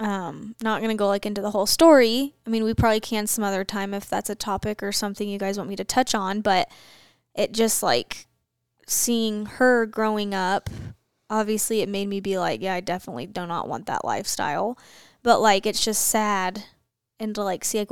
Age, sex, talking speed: 10-29, female, 210 wpm